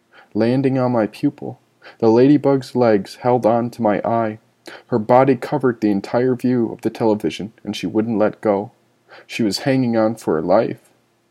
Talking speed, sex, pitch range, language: 175 wpm, male, 110-135 Hz, English